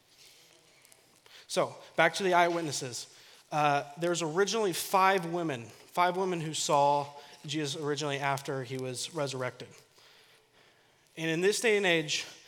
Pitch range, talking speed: 140-180 Hz, 125 wpm